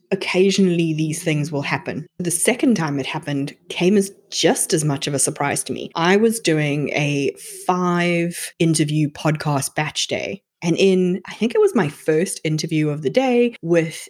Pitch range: 155-200 Hz